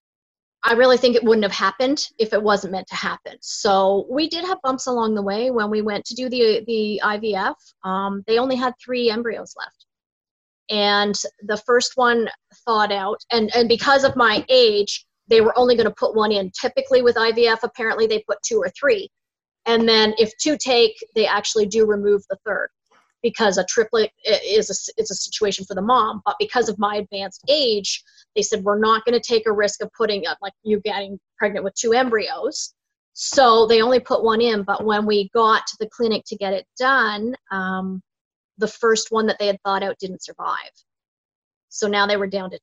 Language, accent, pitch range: English, American, 200-245 Hz